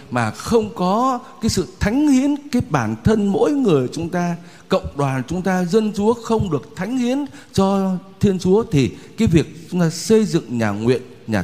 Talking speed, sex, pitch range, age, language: 195 wpm, male, 140-200 Hz, 60-79, Vietnamese